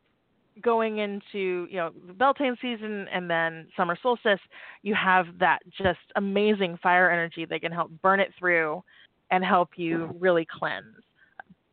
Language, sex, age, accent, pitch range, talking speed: English, female, 30-49, American, 175-195 Hz, 150 wpm